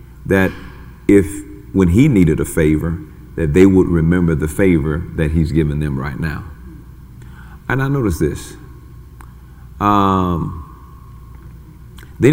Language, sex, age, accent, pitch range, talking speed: English, male, 50-69, American, 75-95 Hz, 120 wpm